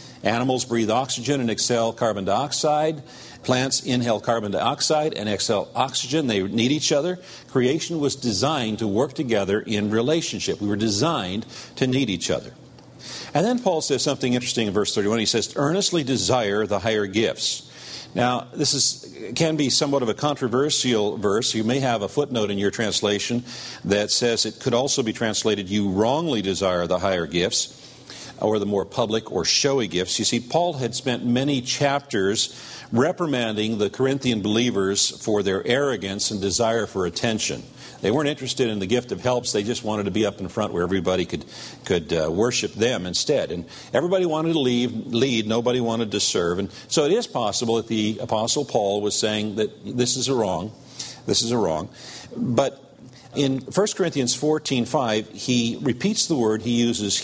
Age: 50-69